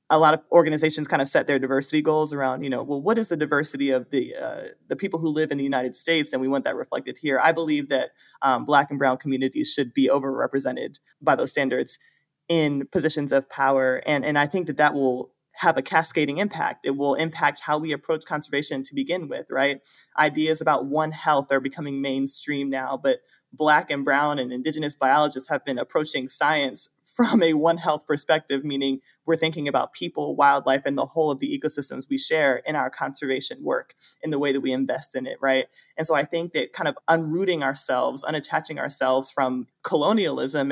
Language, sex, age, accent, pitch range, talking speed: English, male, 20-39, American, 135-160 Hz, 205 wpm